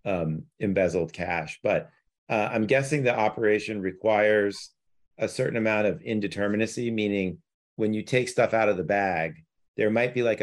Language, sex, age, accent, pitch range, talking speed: English, male, 40-59, American, 100-115 Hz, 160 wpm